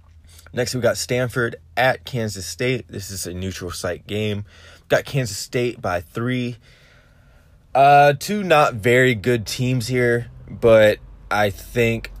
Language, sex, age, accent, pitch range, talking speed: English, male, 20-39, American, 95-120 Hz, 140 wpm